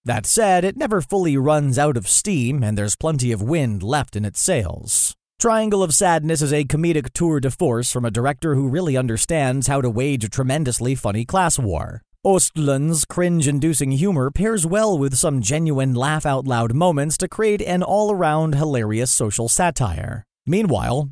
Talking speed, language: 170 wpm, English